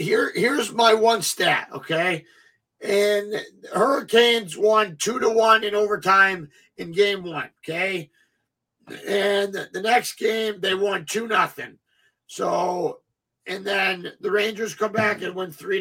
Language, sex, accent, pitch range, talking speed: English, male, American, 195-235 Hz, 135 wpm